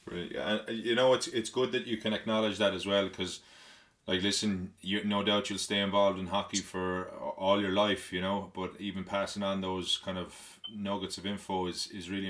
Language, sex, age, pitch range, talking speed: English, male, 20-39, 90-100 Hz, 215 wpm